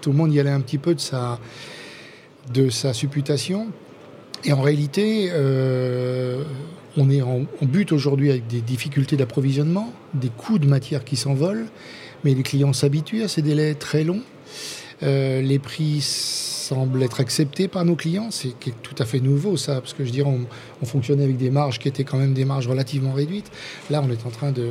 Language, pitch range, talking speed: French, 130-150 Hz, 195 wpm